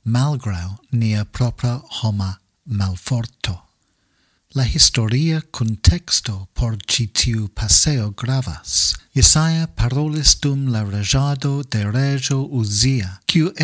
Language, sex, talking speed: English, male, 90 wpm